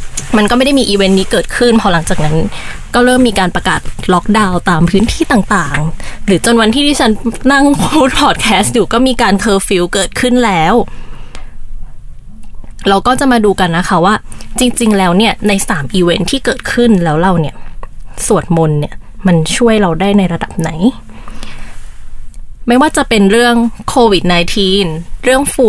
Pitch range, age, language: 180-235 Hz, 20-39, Thai